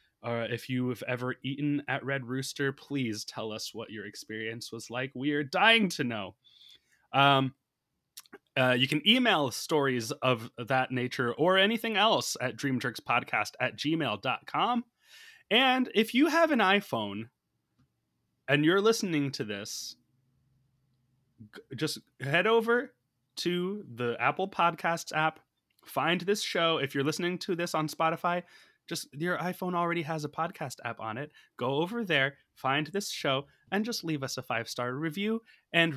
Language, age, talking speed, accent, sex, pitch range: English, 20-39, 155 wpm, American, male, 125-175 Hz